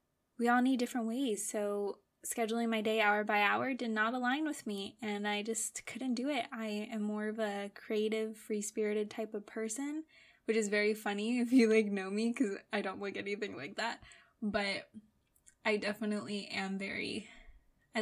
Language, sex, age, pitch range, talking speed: English, female, 10-29, 210-245 Hz, 185 wpm